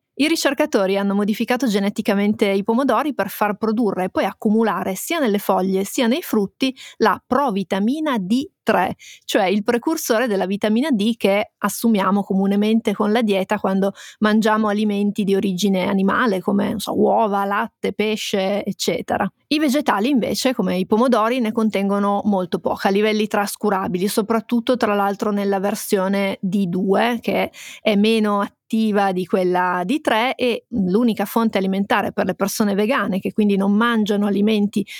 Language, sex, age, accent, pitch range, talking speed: Italian, female, 30-49, native, 195-235 Hz, 150 wpm